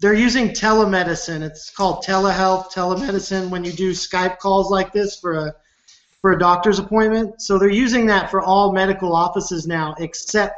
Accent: American